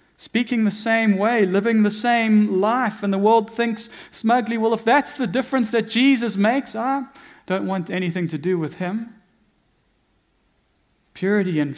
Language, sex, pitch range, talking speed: English, male, 160-225 Hz, 160 wpm